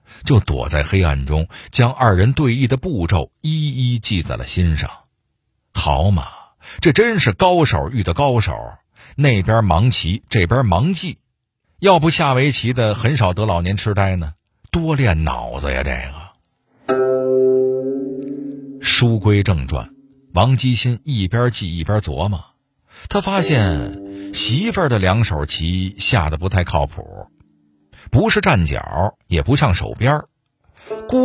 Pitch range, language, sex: 90-130 Hz, Chinese, male